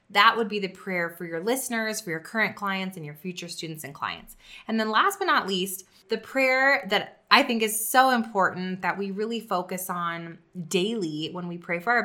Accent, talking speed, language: American, 215 wpm, English